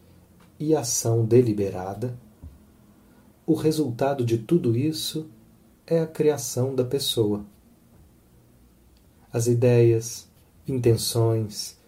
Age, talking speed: 40-59, 80 wpm